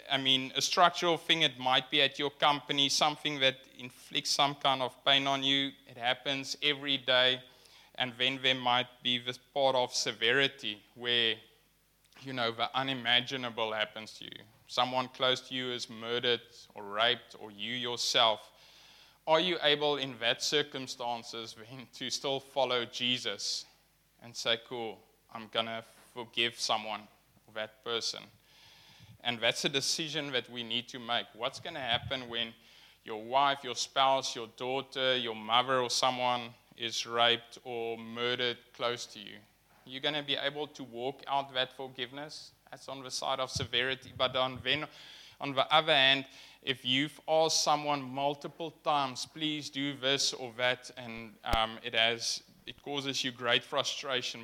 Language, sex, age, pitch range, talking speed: English, male, 20-39, 120-140 Hz, 160 wpm